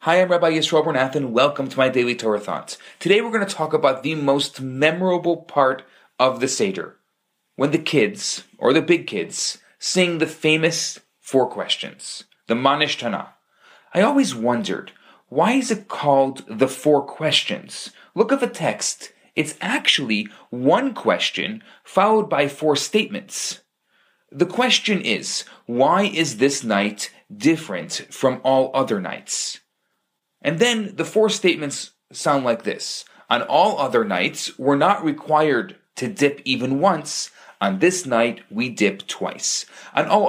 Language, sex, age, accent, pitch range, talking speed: English, male, 30-49, Canadian, 130-205 Hz, 145 wpm